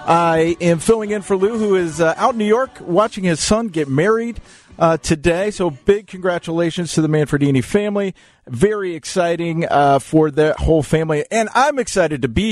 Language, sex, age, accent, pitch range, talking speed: English, male, 40-59, American, 150-195 Hz, 185 wpm